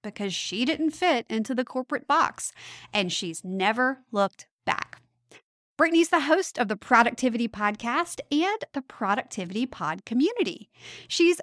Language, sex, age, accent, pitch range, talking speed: English, female, 30-49, American, 205-305 Hz, 135 wpm